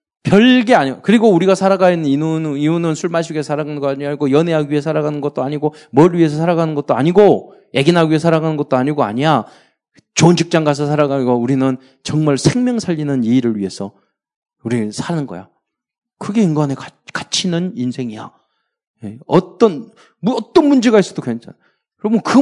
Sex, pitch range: male, 135-190 Hz